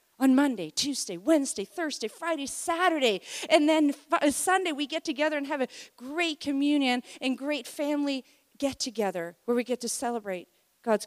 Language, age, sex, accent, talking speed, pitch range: English, 40-59, female, American, 150 wpm, 205-275 Hz